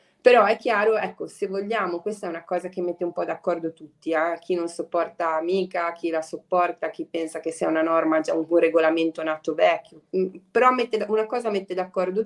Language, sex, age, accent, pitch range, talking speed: Italian, female, 20-39, native, 160-190 Hz, 205 wpm